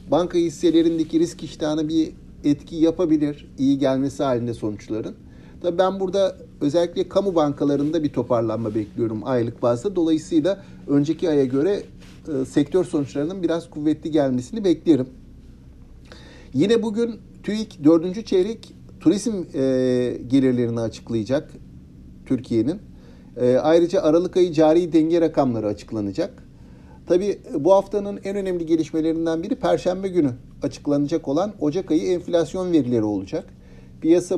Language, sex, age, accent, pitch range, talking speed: Turkish, male, 60-79, native, 125-175 Hz, 115 wpm